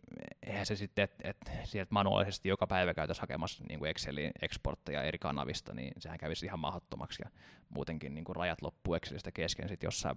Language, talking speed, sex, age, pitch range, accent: Finnish, 170 wpm, male, 20-39, 90-105 Hz, native